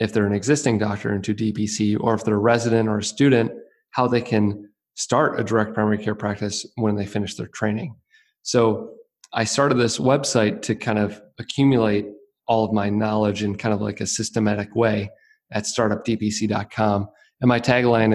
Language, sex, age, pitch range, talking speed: English, male, 30-49, 105-120 Hz, 175 wpm